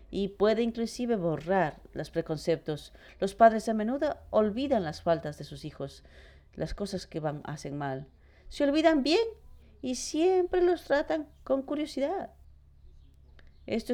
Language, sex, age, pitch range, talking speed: English, female, 40-59, 160-230 Hz, 140 wpm